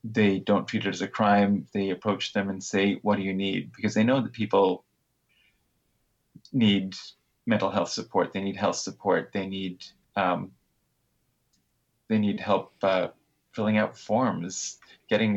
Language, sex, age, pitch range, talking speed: English, male, 30-49, 100-110 Hz, 155 wpm